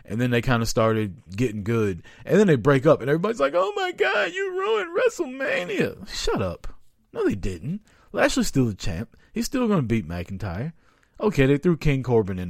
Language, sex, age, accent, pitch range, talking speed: English, male, 40-59, American, 105-140 Hz, 205 wpm